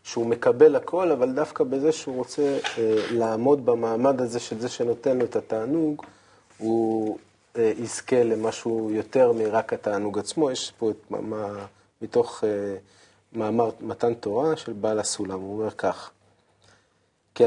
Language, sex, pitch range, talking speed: Hebrew, male, 110-145 Hz, 145 wpm